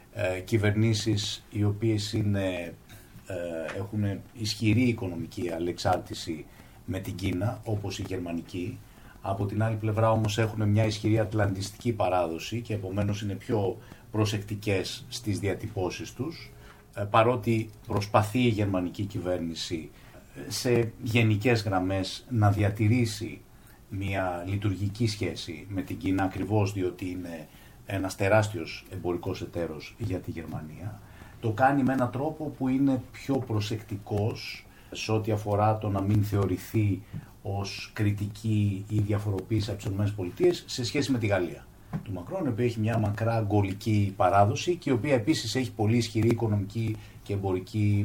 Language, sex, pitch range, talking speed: Greek, male, 95-115 Hz, 130 wpm